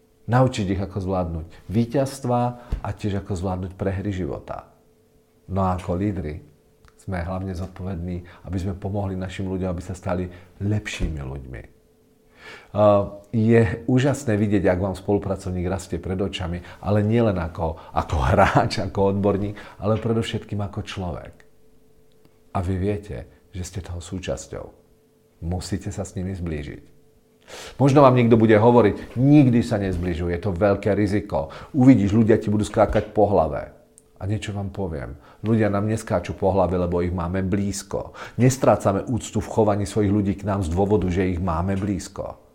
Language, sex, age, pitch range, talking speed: Czech, male, 40-59, 90-105 Hz, 150 wpm